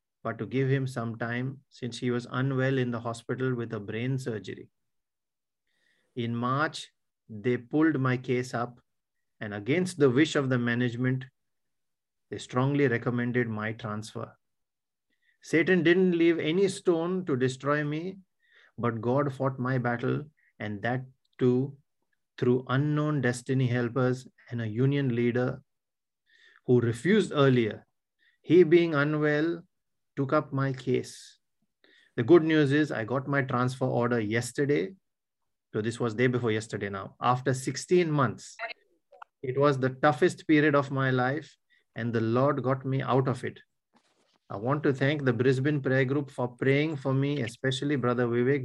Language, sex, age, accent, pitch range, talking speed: English, male, 30-49, Indian, 120-145 Hz, 150 wpm